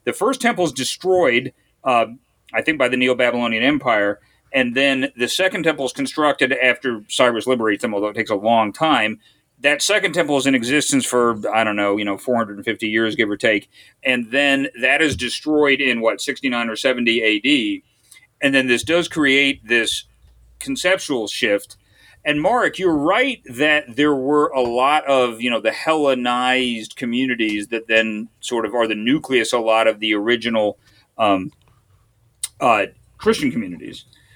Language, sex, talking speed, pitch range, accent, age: English, male, 170 wpm, 115-165 Hz, American, 40-59